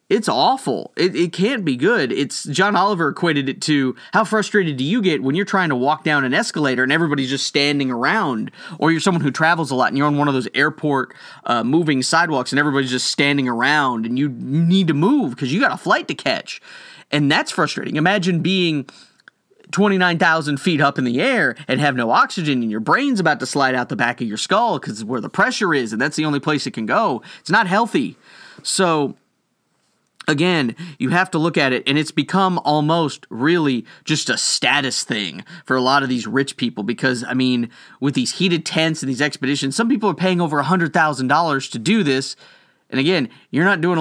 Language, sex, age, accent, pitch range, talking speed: English, male, 30-49, American, 130-175 Hz, 215 wpm